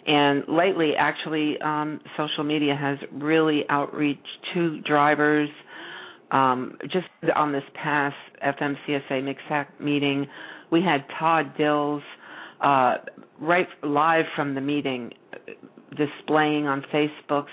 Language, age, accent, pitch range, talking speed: English, 50-69, American, 135-150 Hz, 110 wpm